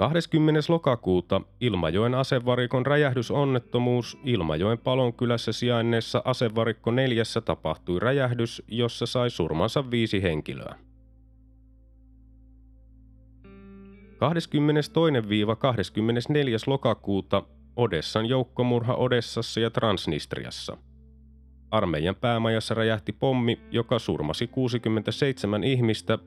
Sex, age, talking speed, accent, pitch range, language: male, 30-49, 75 wpm, native, 95-120 Hz, Finnish